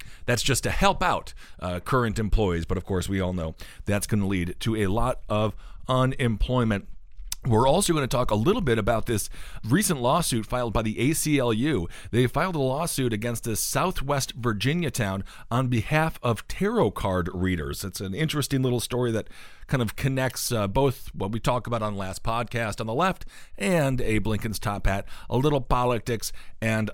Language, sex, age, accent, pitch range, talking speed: English, male, 40-59, American, 100-130 Hz, 190 wpm